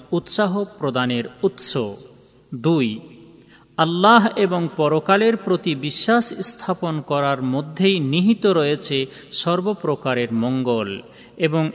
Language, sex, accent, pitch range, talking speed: Bengali, male, native, 130-185 Hz, 85 wpm